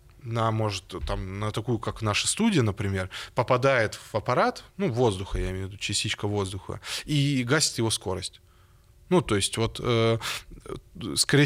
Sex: male